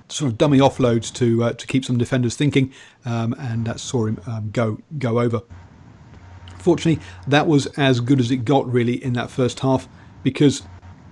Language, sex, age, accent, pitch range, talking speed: English, male, 40-59, British, 115-135 Hz, 190 wpm